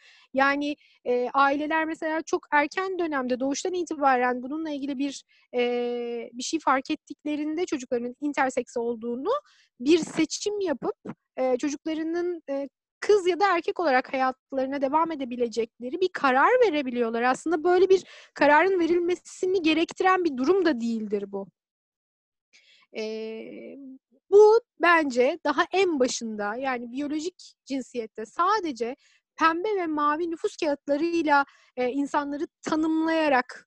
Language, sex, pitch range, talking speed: Turkish, female, 250-345 Hz, 120 wpm